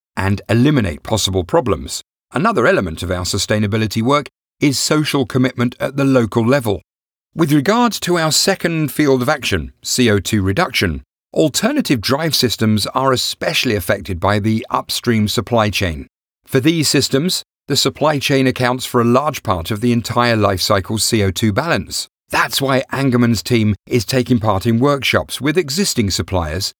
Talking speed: 150 wpm